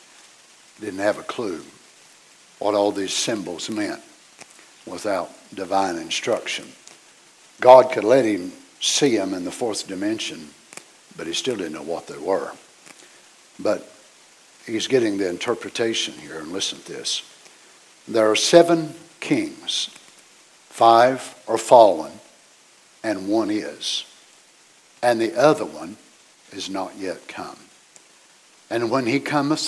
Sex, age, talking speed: male, 60-79, 125 wpm